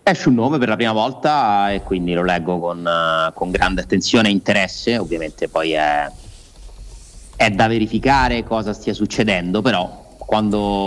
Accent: native